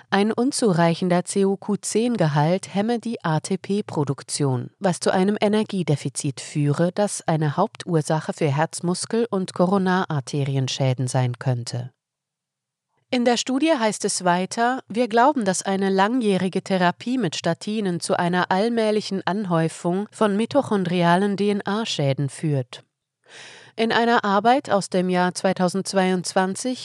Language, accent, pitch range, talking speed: German, German, 160-215 Hz, 110 wpm